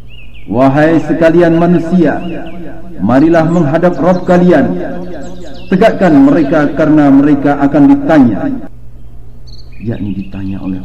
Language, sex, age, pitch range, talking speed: Indonesian, male, 50-69, 105-135 Hz, 90 wpm